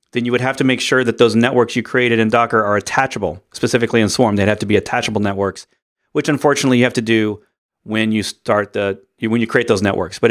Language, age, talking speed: English, 40-59, 240 wpm